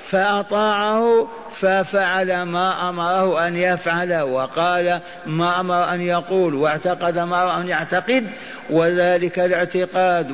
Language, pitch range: Arabic, 180-210 Hz